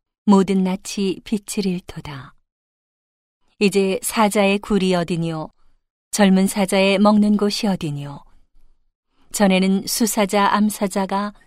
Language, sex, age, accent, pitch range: Korean, female, 40-59, native, 170-205 Hz